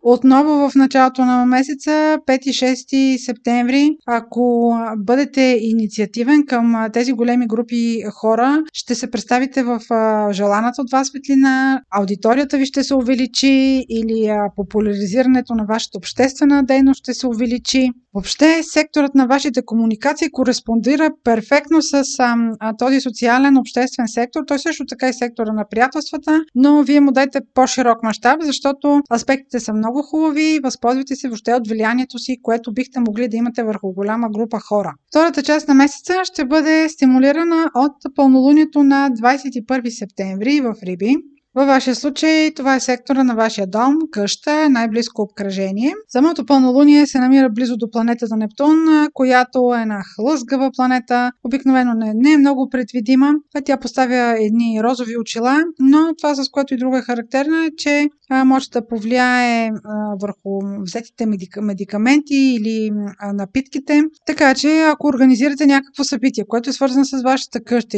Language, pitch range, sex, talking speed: Bulgarian, 230-280 Hz, female, 145 wpm